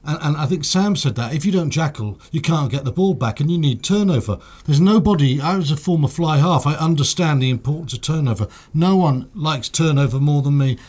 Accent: British